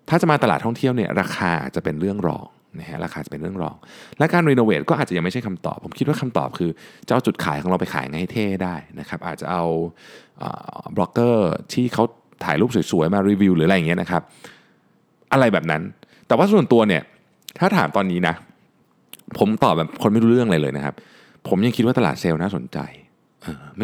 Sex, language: male, Thai